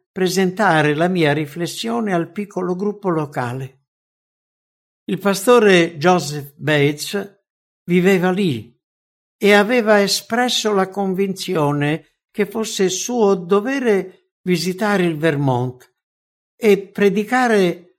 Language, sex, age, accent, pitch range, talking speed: English, male, 60-79, Italian, 145-200 Hz, 95 wpm